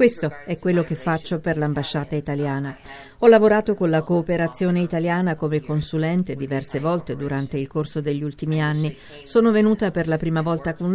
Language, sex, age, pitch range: Italian, female, 50-69, 145-180 Hz